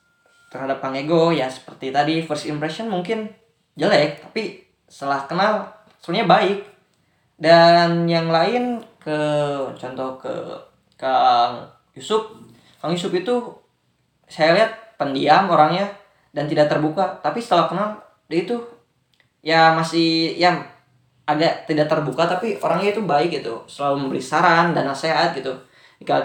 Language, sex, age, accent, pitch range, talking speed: Indonesian, female, 10-29, native, 145-185 Hz, 130 wpm